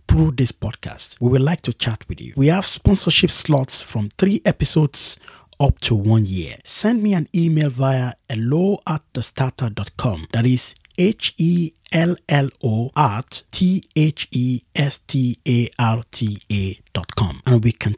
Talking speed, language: 135 wpm, English